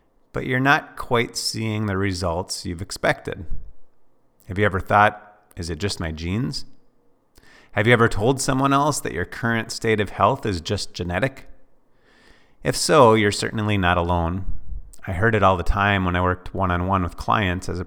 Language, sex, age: English, male, 30-49